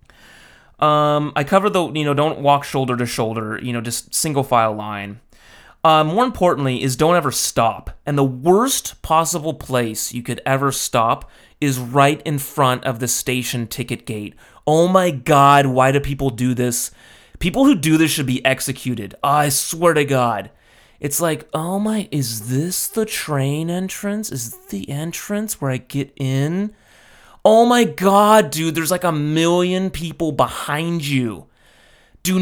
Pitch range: 125-165 Hz